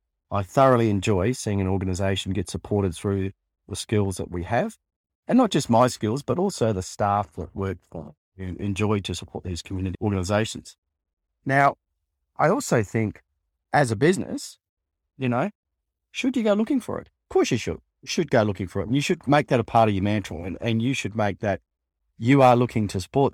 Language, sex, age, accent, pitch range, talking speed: English, male, 40-59, Australian, 90-120 Hz, 205 wpm